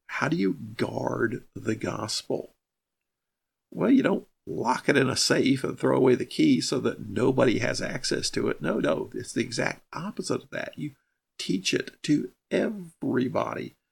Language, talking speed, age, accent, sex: English, 170 wpm, 50-69, American, male